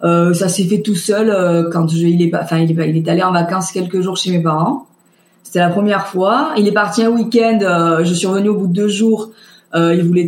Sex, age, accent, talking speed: female, 20-39, French, 255 wpm